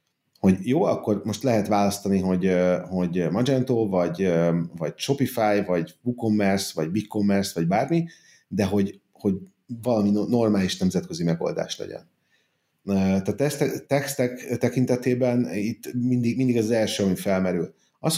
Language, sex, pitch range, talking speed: Hungarian, male, 100-125 Hz, 125 wpm